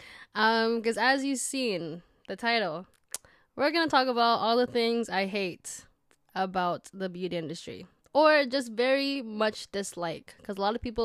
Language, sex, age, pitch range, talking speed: English, female, 10-29, 185-240 Hz, 170 wpm